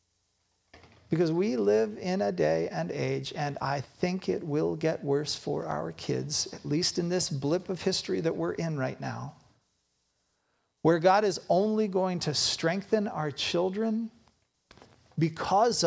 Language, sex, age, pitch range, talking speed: English, male, 40-59, 130-190 Hz, 150 wpm